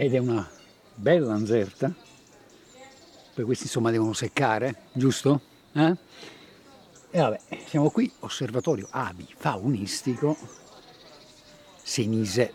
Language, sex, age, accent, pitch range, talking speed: Italian, male, 50-69, native, 115-150 Hz, 95 wpm